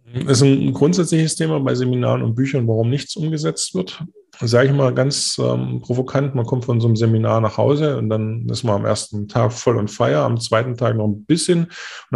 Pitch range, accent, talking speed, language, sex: 105-130 Hz, German, 215 wpm, German, male